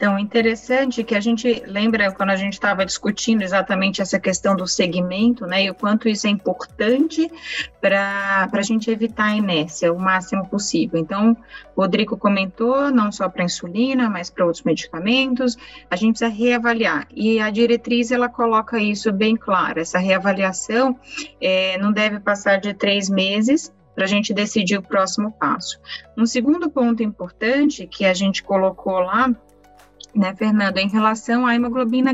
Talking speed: 160 wpm